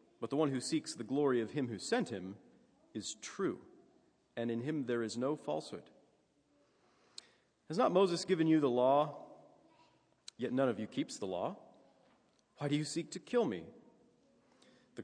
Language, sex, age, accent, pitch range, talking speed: English, male, 40-59, American, 110-155 Hz, 170 wpm